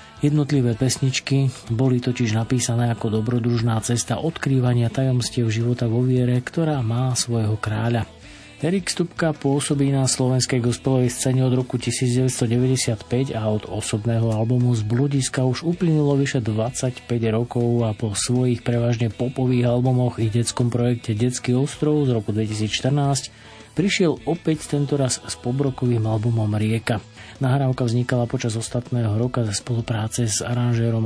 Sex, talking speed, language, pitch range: male, 130 wpm, Slovak, 115-135 Hz